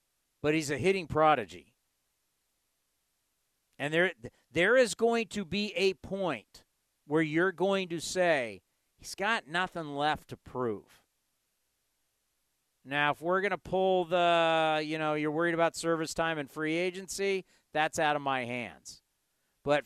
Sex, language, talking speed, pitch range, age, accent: male, English, 145 wpm, 150-190 Hz, 50-69, American